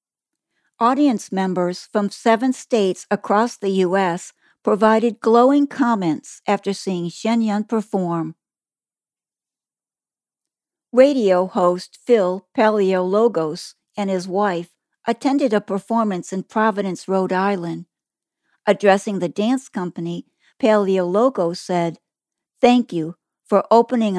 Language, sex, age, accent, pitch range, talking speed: English, female, 60-79, American, 175-215 Hz, 100 wpm